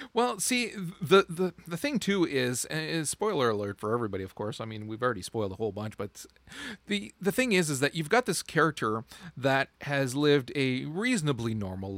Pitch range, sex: 120-160 Hz, male